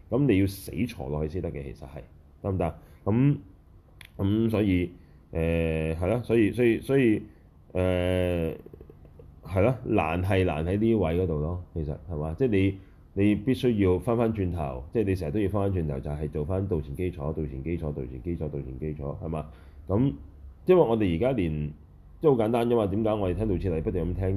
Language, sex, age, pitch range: Chinese, male, 10-29, 75-100 Hz